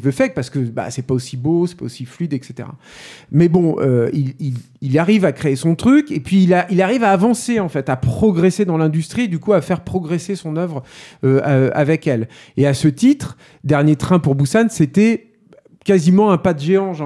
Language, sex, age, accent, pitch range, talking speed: French, male, 40-59, French, 140-180 Hz, 230 wpm